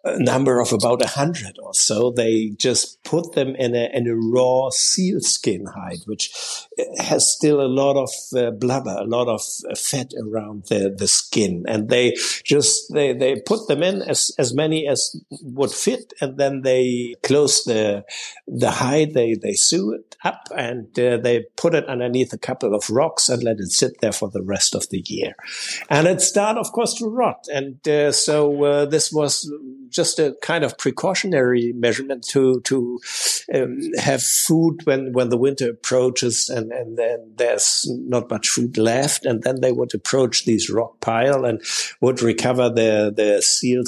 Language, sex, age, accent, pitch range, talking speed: English, male, 60-79, German, 115-145 Hz, 185 wpm